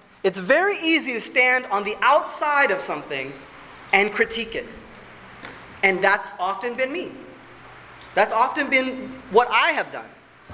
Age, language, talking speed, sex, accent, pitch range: 30-49, English, 140 wpm, male, American, 205-335 Hz